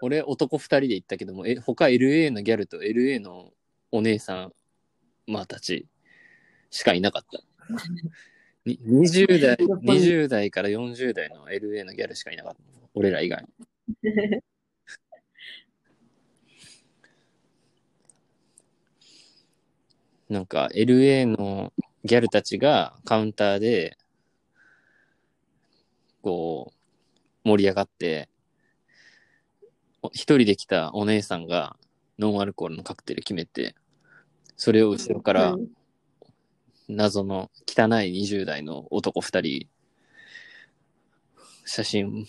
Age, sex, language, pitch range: 20-39, male, Japanese, 100-140 Hz